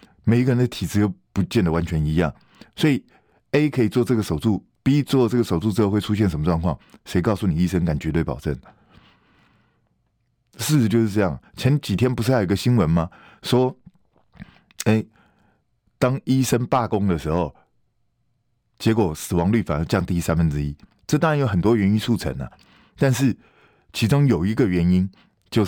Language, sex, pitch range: Chinese, male, 85-120 Hz